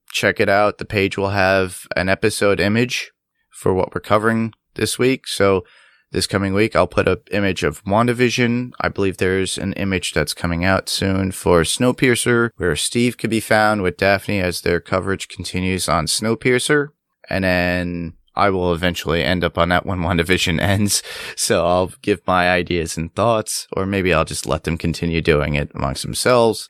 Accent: American